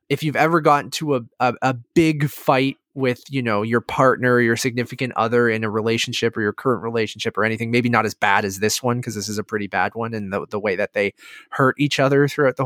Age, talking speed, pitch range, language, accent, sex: 20-39, 250 wpm, 115-160 Hz, English, American, male